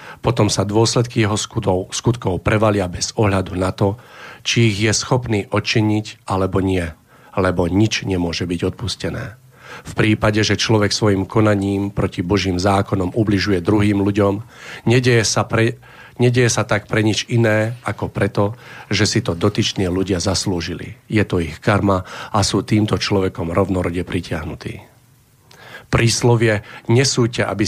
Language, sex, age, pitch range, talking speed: Slovak, male, 40-59, 100-115 Hz, 135 wpm